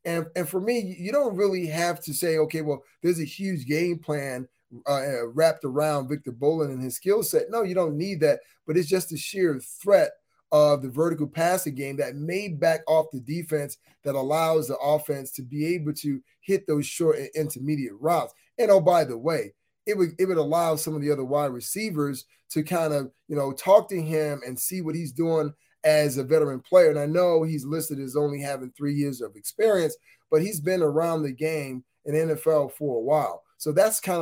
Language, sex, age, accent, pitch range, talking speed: English, male, 30-49, American, 140-170 Hz, 210 wpm